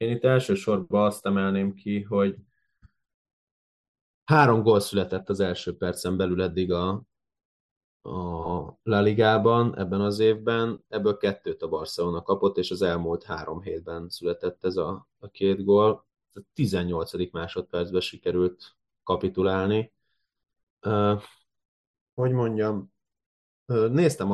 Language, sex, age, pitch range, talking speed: Hungarian, male, 20-39, 95-110 Hz, 115 wpm